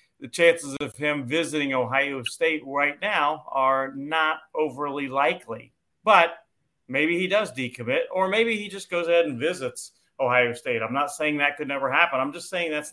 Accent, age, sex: American, 40-59, male